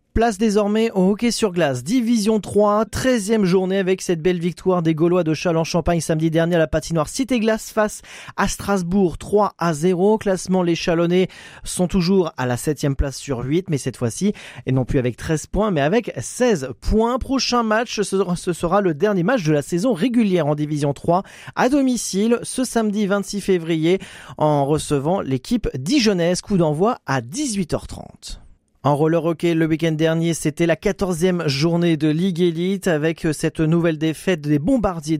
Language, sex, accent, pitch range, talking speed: French, male, French, 155-200 Hz, 175 wpm